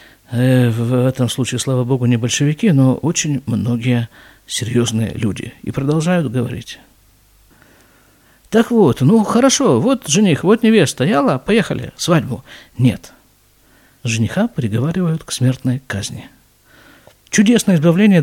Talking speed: 110 wpm